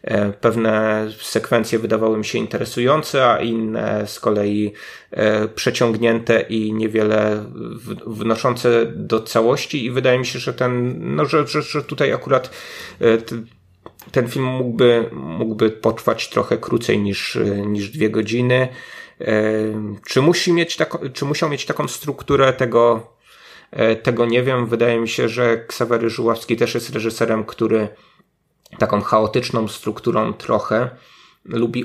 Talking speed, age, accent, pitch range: 125 wpm, 30-49, native, 105-125 Hz